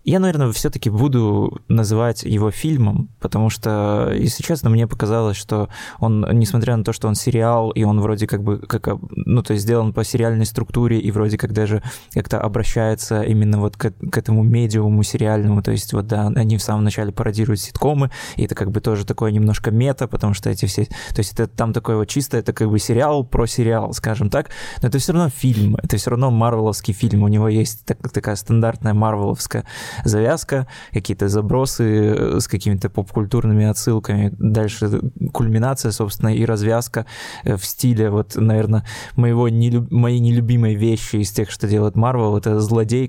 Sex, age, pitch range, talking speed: male, 20-39, 105-120 Hz, 175 wpm